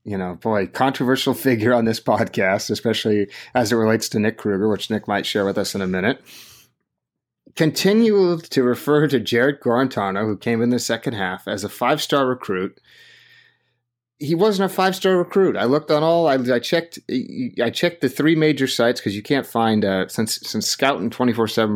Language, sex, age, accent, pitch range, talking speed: English, male, 30-49, American, 115-170 Hz, 195 wpm